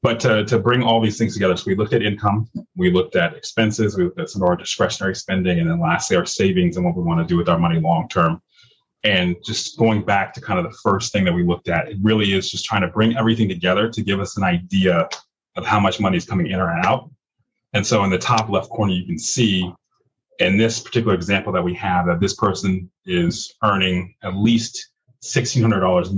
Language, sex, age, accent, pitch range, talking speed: English, male, 30-49, American, 95-115 Hz, 235 wpm